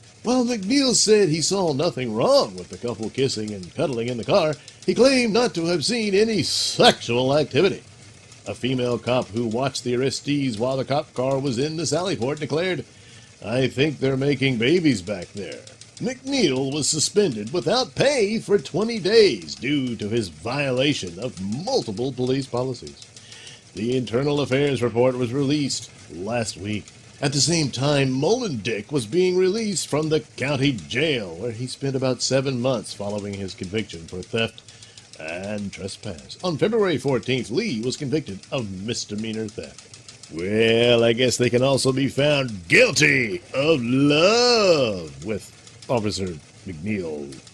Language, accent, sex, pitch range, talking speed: English, American, male, 115-155 Hz, 150 wpm